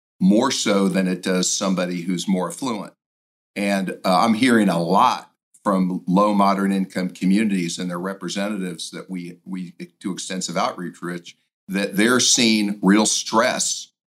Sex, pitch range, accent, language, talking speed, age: male, 90-105 Hz, American, English, 140 wpm, 50-69